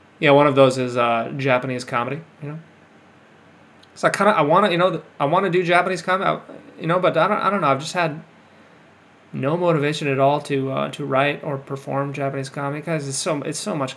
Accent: American